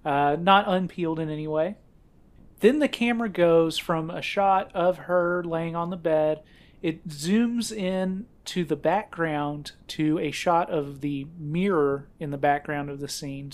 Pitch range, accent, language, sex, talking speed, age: 150-185 Hz, American, English, male, 165 wpm, 30-49